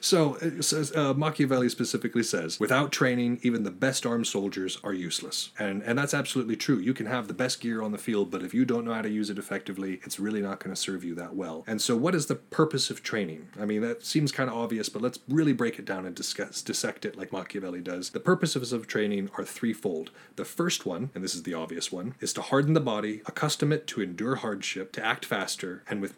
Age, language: 30-49, English